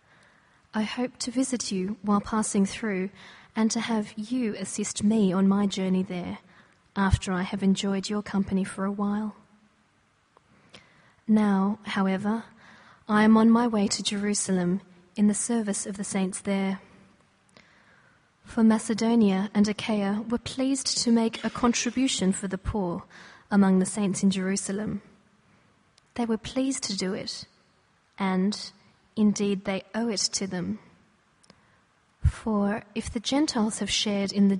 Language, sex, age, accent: English, female, 20-39, Australian